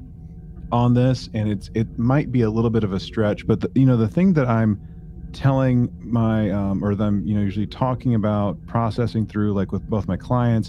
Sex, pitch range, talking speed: male, 90-115 Hz, 220 wpm